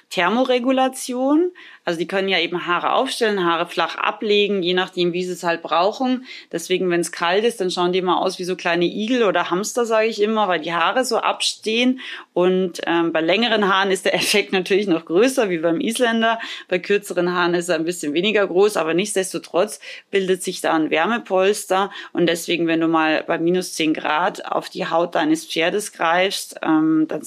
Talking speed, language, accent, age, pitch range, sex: 195 wpm, German, German, 20-39, 165-205 Hz, female